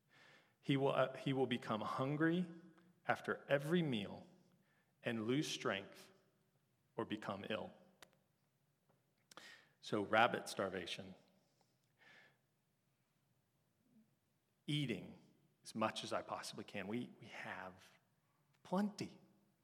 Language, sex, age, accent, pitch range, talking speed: English, male, 40-59, American, 105-135 Hz, 90 wpm